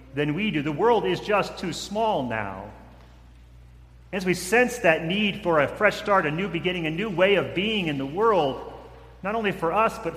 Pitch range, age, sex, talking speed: 135-195 Hz, 40-59, male, 205 wpm